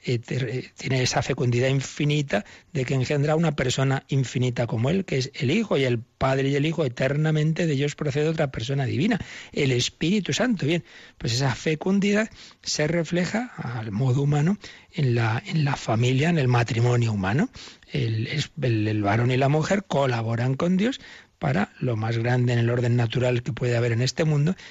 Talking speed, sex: 175 wpm, male